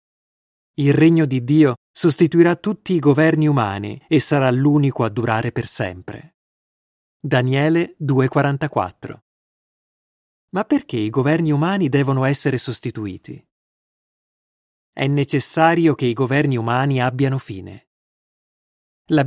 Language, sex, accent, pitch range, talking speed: Italian, male, native, 120-160 Hz, 110 wpm